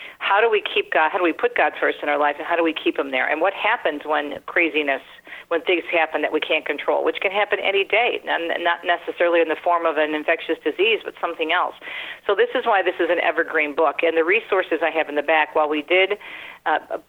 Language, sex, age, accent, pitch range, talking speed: English, female, 50-69, American, 155-190 Hz, 255 wpm